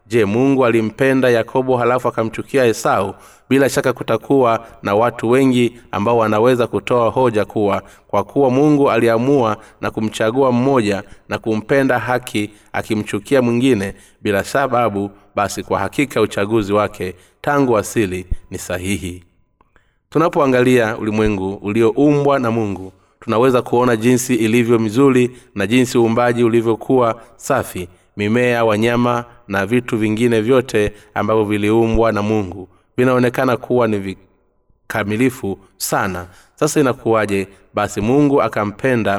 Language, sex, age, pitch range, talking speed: Swahili, male, 30-49, 100-125 Hz, 115 wpm